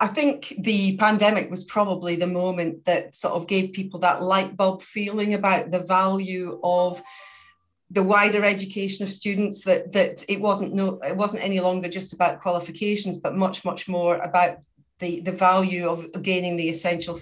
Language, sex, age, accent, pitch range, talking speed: English, female, 40-59, British, 180-205 Hz, 175 wpm